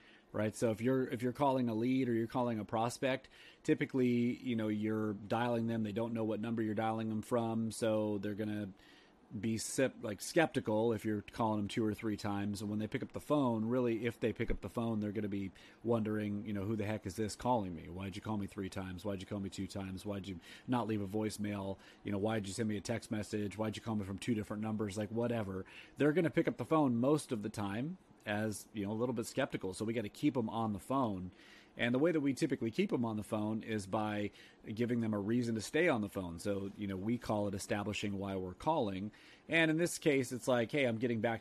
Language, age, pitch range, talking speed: English, 30-49, 100-120 Hz, 255 wpm